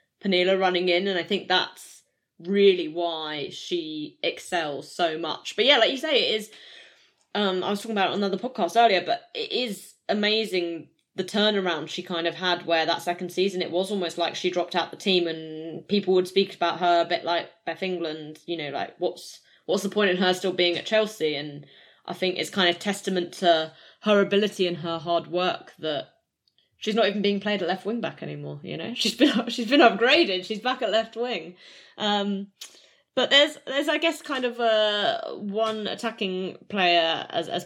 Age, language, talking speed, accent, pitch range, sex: 20-39, English, 205 wpm, British, 170-220 Hz, female